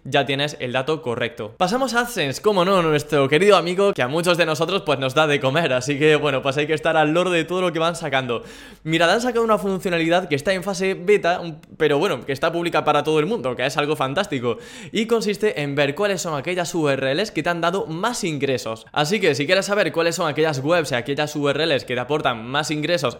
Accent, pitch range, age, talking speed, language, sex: Spanish, 140-175 Hz, 20-39, 240 wpm, Spanish, male